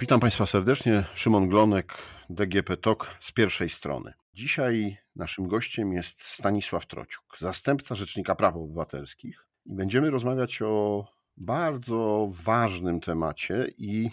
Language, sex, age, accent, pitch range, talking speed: Polish, male, 40-59, native, 95-120 Hz, 120 wpm